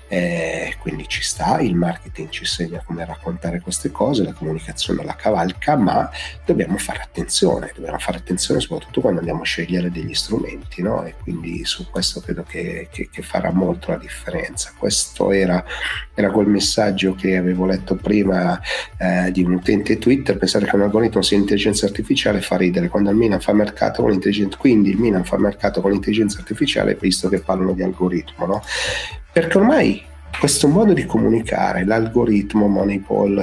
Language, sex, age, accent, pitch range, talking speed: Italian, male, 40-59, native, 90-105 Hz, 170 wpm